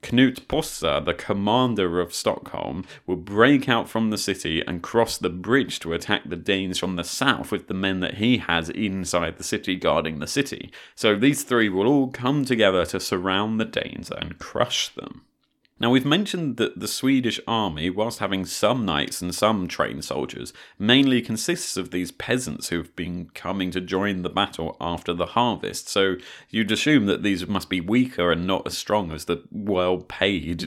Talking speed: 185 wpm